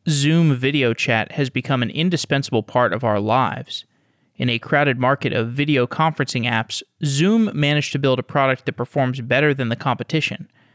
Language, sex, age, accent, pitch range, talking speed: English, male, 30-49, American, 125-150 Hz, 175 wpm